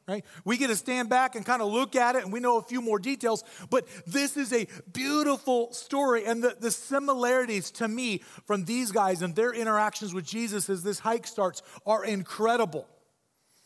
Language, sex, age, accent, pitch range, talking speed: English, male, 40-59, American, 140-200 Hz, 200 wpm